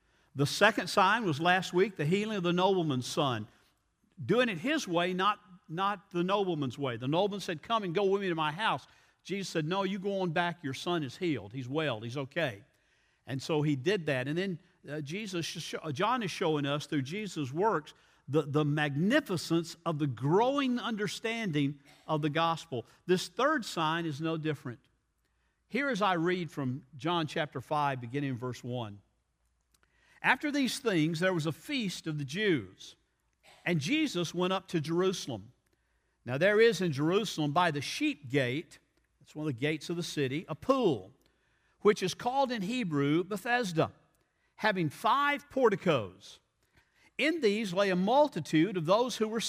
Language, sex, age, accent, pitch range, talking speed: English, male, 50-69, American, 145-200 Hz, 175 wpm